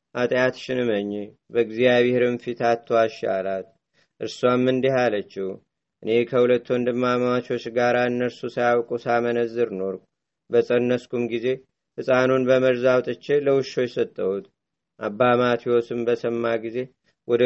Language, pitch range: Amharic, 115-130 Hz